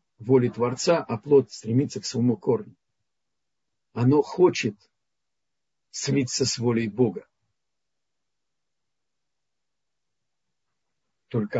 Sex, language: male, Russian